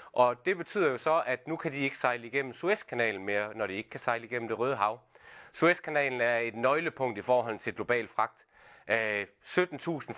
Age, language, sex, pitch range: 30-49, Danish, male, 115-150 Hz